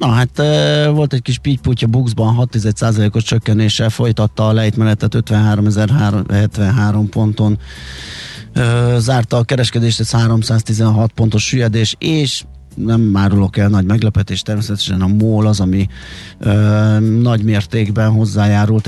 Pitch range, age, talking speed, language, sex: 105-115 Hz, 30-49, 125 wpm, Hungarian, male